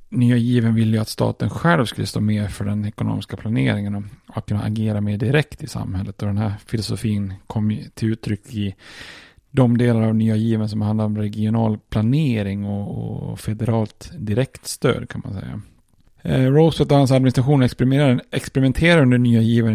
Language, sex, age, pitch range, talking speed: Swedish, male, 30-49, 105-125 Hz, 175 wpm